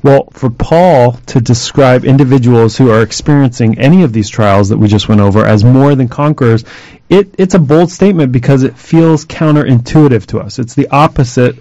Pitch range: 120-145 Hz